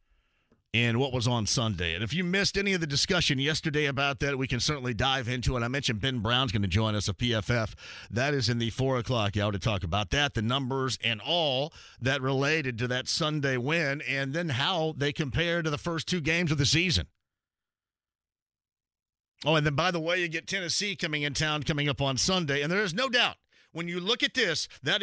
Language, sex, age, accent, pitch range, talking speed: English, male, 40-59, American, 120-160 Hz, 225 wpm